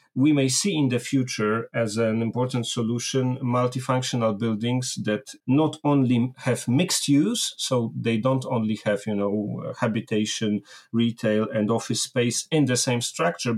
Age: 40-59